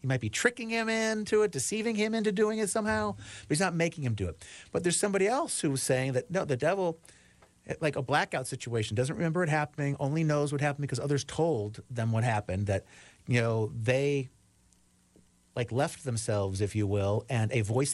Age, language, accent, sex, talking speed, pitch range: 40-59, English, American, male, 205 wpm, 105-150 Hz